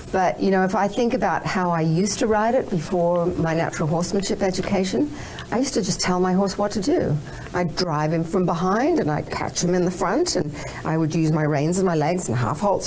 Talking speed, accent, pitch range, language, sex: 240 wpm, Australian, 160-190 Hz, English, female